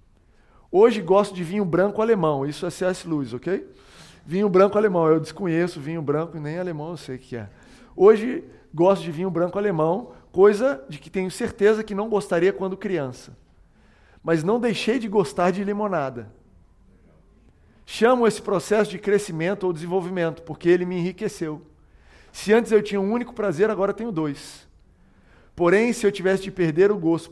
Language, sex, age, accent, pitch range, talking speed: Portuguese, male, 50-69, Brazilian, 160-210 Hz, 170 wpm